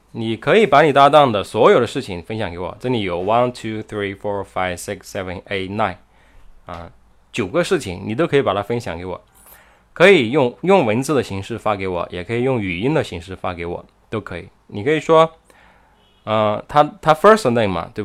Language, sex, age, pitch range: Chinese, male, 20-39, 95-125 Hz